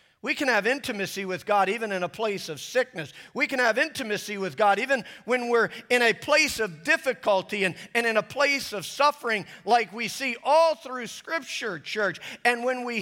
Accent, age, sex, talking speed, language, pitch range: American, 40-59, male, 200 wpm, English, 195-255 Hz